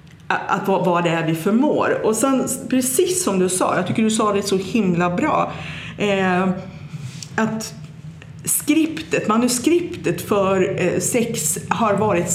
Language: Swedish